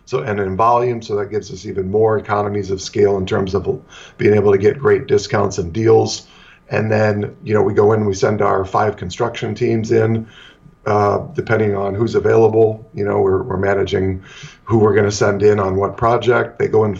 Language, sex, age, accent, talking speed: English, male, 40-59, American, 210 wpm